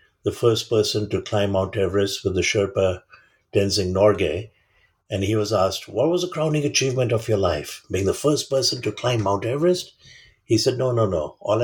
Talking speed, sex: 195 wpm, male